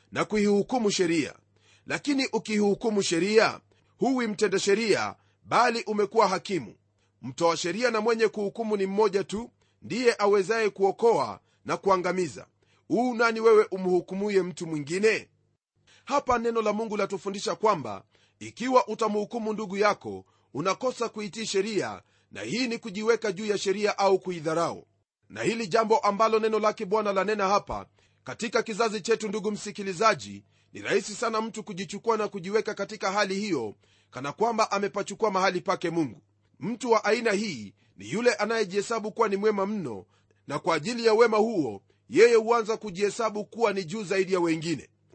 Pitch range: 180-225 Hz